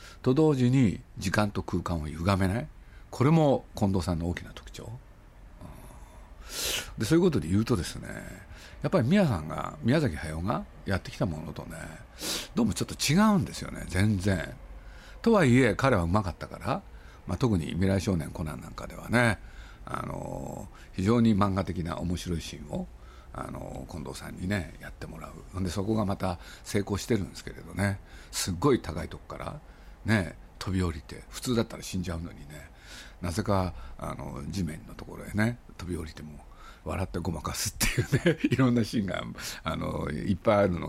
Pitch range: 85-115 Hz